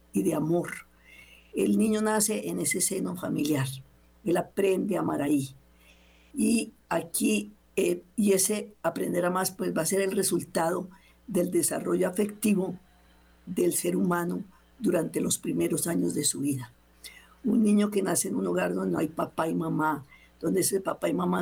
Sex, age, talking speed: female, 50-69, 170 wpm